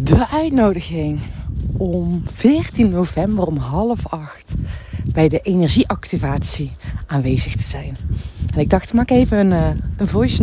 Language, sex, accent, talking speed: Dutch, female, Dutch, 140 wpm